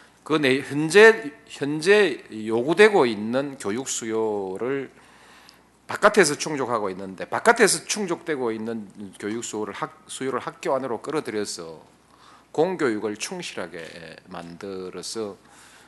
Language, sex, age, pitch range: Korean, male, 40-59, 105-165 Hz